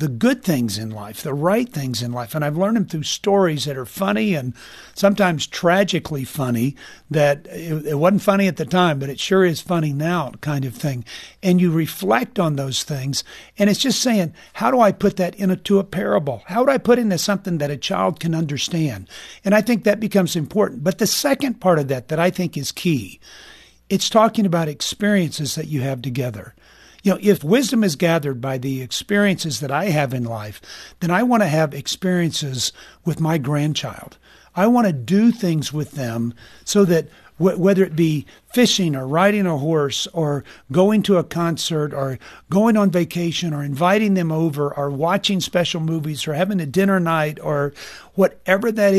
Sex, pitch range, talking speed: male, 145-195 Hz, 195 wpm